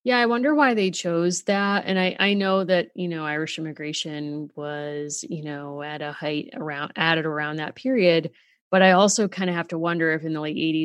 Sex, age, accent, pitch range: female, 30-49, American, 155-185 Hz